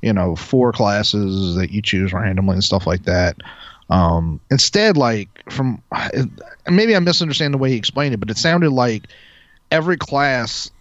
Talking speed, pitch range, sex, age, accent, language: 165 wpm, 105-135 Hz, male, 30-49, American, English